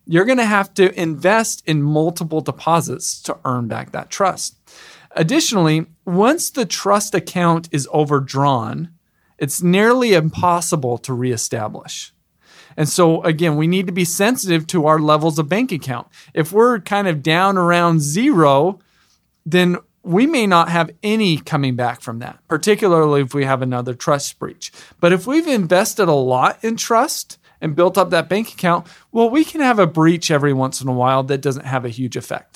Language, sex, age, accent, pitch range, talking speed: English, male, 40-59, American, 150-200 Hz, 175 wpm